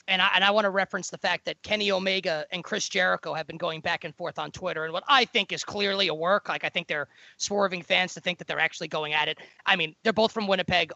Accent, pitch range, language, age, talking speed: American, 185-245 Hz, English, 20-39, 275 wpm